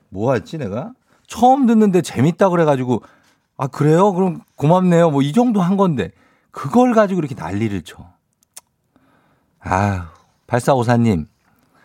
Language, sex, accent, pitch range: Korean, male, native, 100-150 Hz